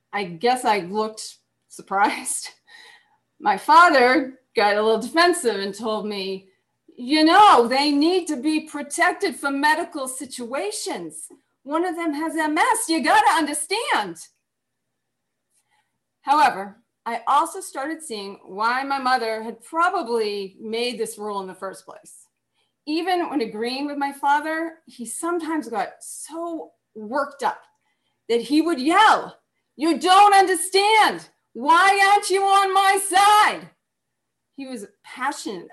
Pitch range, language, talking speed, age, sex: 220-340 Hz, English, 130 wpm, 30-49, female